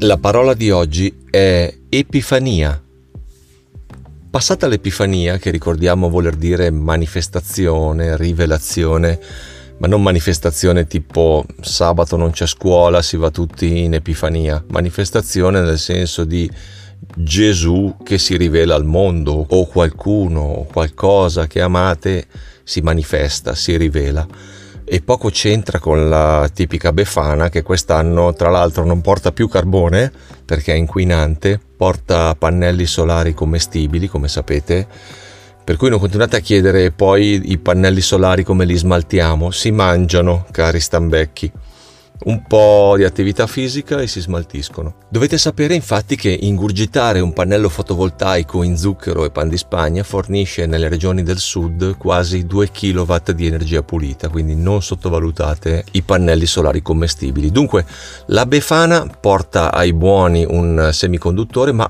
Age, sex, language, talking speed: 40-59, male, Italian, 135 wpm